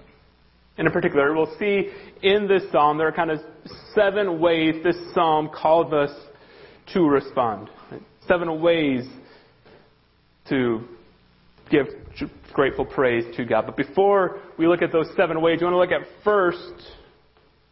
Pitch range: 120-165 Hz